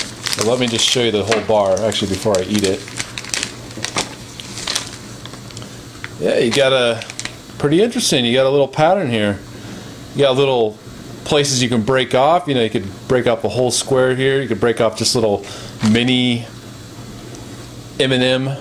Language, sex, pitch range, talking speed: English, male, 115-145 Hz, 170 wpm